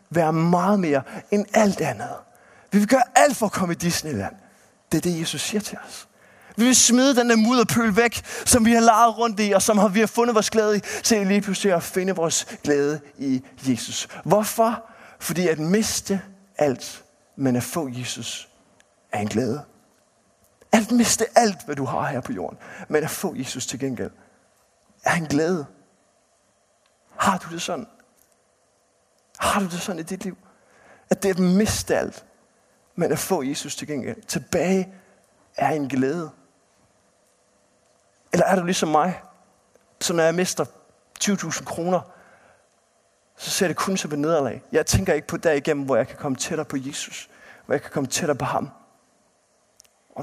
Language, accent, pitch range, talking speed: Danish, native, 145-210 Hz, 175 wpm